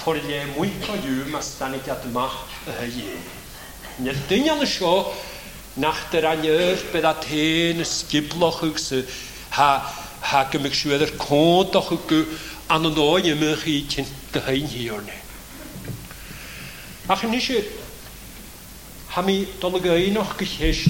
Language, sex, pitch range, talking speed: English, male, 140-185 Hz, 90 wpm